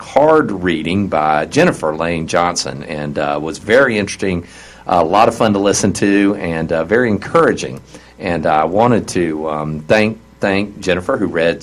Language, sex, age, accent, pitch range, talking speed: English, male, 50-69, American, 80-105 Hz, 170 wpm